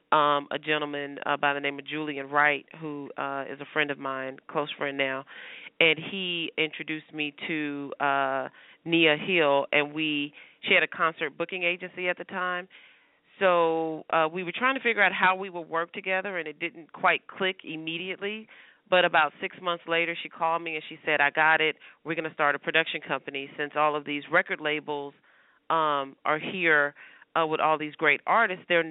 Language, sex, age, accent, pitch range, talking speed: English, female, 40-59, American, 145-170 Hz, 195 wpm